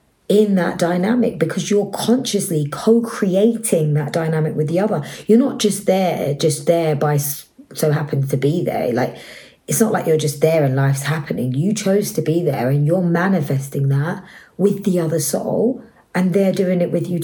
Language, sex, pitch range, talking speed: English, female, 150-195 Hz, 185 wpm